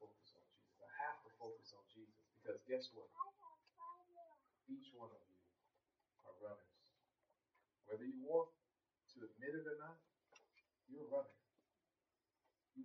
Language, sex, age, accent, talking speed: English, male, 40-59, American, 105 wpm